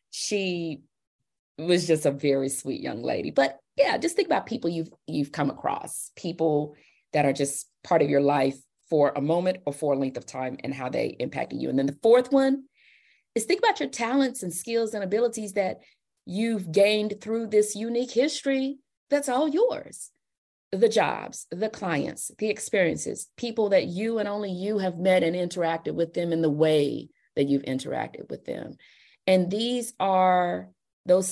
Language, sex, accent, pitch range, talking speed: English, female, American, 155-210 Hz, 180 wpm